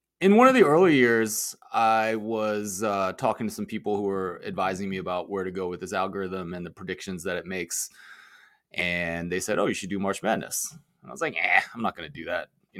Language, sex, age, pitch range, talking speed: English, male, 20-39, 95-115 Hz, 240 wpm